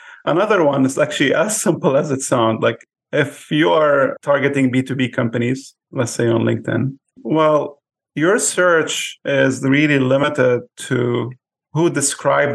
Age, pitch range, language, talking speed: 30-49, 125-150 Hz, English, 140 wpm